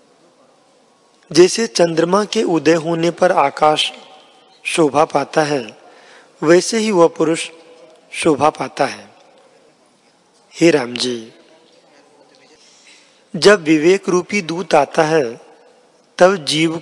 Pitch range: 150-180 Hz